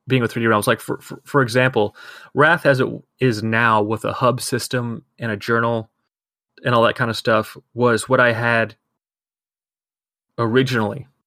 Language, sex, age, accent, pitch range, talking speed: English, male, 30-49, American, 110-130 Hz, 175 wpm